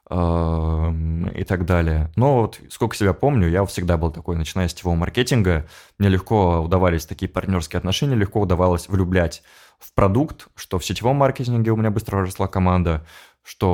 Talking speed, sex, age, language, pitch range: 160 wpm, male, 20-39, Russian, 85-105 Hz